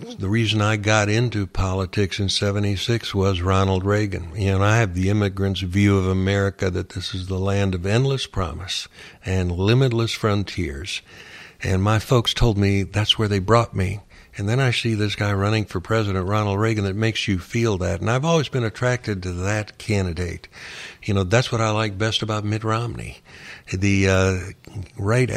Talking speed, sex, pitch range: 185 wpm, male, 95-115 Hz